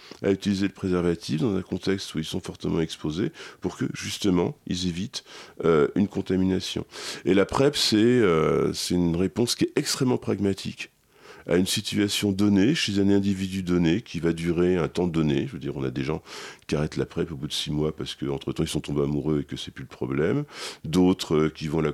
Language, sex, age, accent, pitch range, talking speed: French, male, 40-59, French, 80-105 Hz, 215 wpm